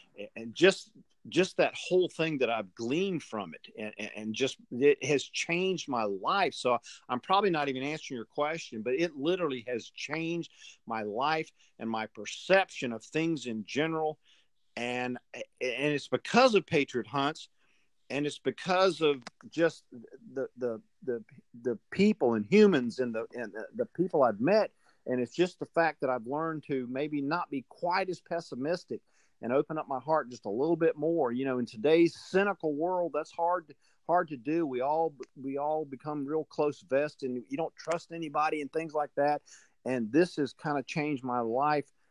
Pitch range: 125-160 Hz